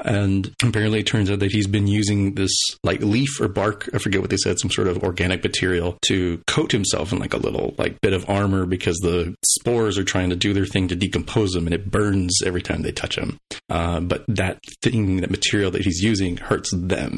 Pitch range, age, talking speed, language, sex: 95-110 Hz, 30-49, 230 wpm, English, male